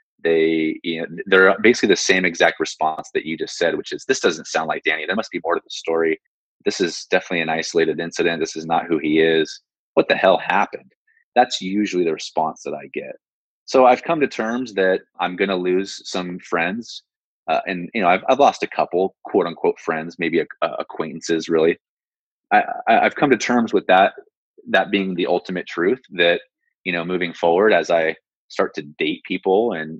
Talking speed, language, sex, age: 210 wpm, English, male, 30-49